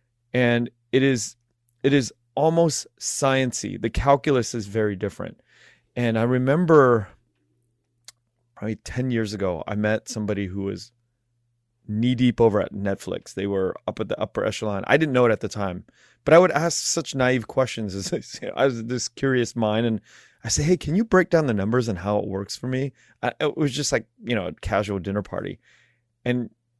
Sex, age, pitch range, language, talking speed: male, 30-49, 105-125 Hz, Vietnamese, 200 wpm